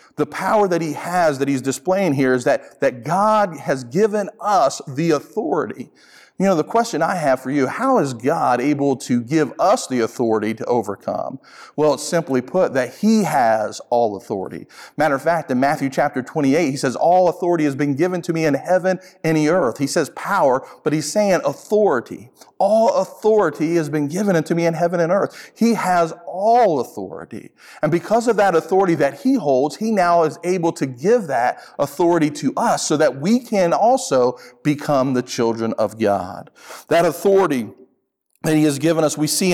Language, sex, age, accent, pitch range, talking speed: English, male, 50-69, American, 140-185 Hz, 190 wpm